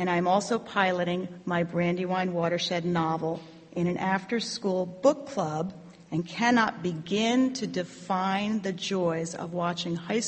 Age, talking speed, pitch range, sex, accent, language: 40-59, 135 wpm, 170-210 Hz, female, American, English